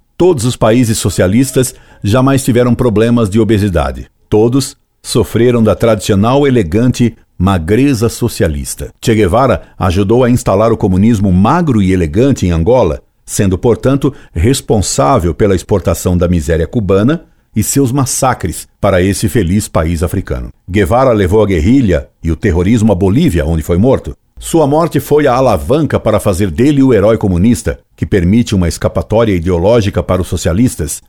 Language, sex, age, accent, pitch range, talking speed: Portuguese, male, 60-79, Brazilian, 90-120 Hz, 145 wpm